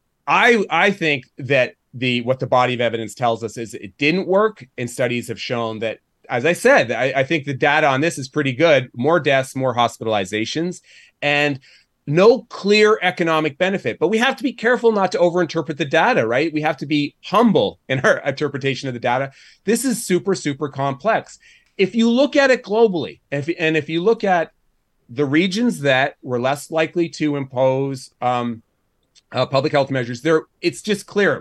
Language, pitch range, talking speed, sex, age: English, 130-175 Hz, 190 wpm, male, 30-49